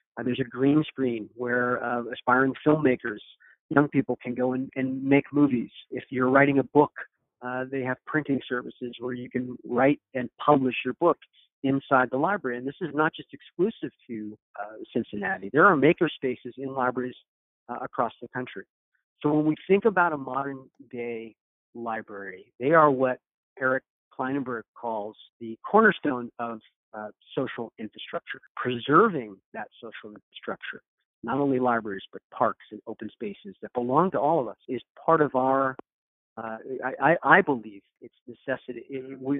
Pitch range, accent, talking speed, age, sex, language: 120-140 Hz, American, 165 wpm, 50-69, male, English